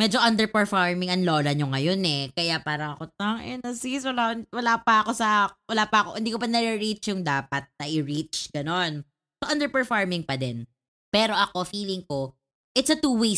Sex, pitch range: female, 160-230 Hz